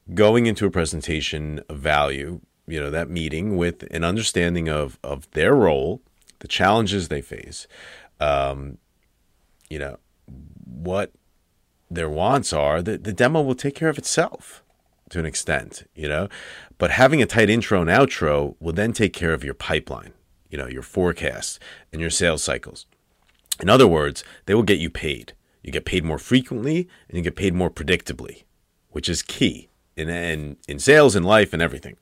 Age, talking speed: 40-59, 175 wpm